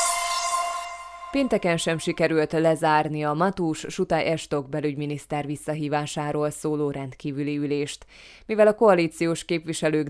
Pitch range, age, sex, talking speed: 145-180 Hz, 20-39, female, 100 wpm